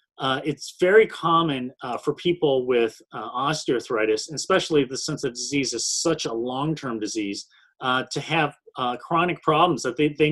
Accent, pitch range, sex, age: American, 130-165 Hz, male, 30-49